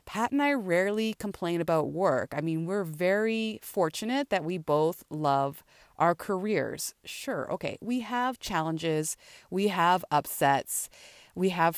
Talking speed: 145 wpm